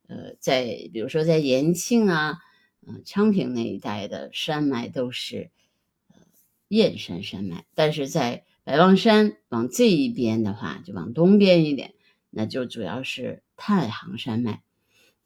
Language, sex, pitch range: Chinese, female, 130-185 Hz